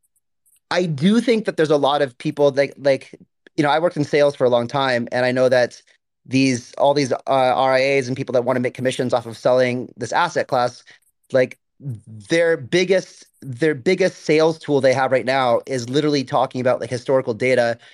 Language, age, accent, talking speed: English, 30-49, American, 205 wpm